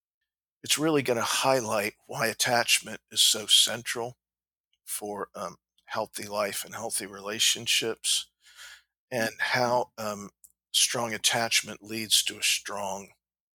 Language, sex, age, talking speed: English, male, 50-69, 115 wpm